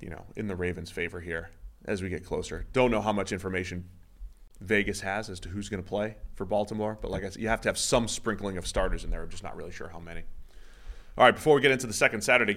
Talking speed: 265 wpm